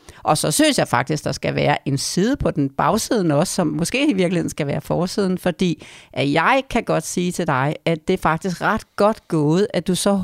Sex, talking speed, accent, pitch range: female, 235 wpm, native, 175-215 Hz